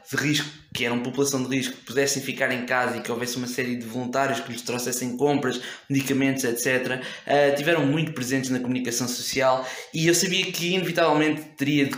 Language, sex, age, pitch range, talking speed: English, male, 20-39, 130-160 Hz, 200 wpm